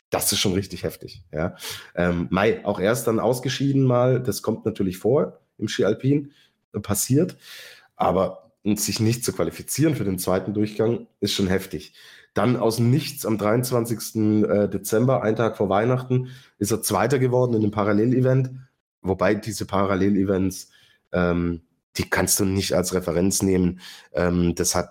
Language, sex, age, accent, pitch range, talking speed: German, male, 30-49, German, 95-125 Hz, 150 wpm